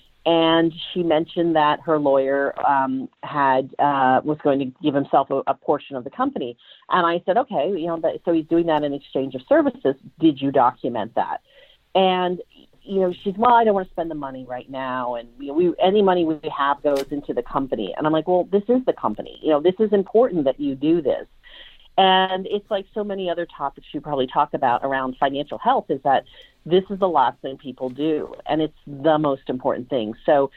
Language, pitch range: English, 140-185 Hz